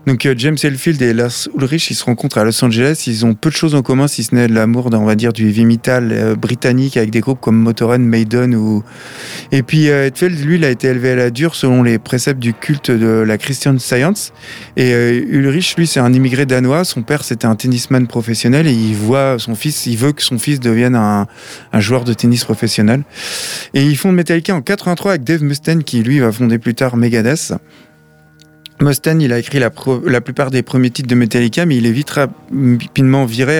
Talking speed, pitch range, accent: 225 wpm, 115-145 Hz, French